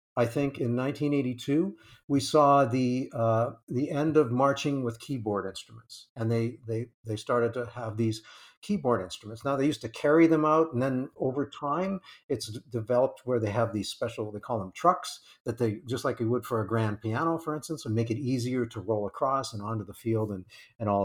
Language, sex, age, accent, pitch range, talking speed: English, male, 50-69, American, 110-140 Hz, 210 wpm